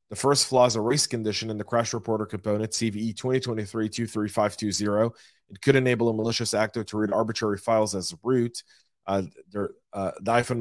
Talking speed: 160 wpm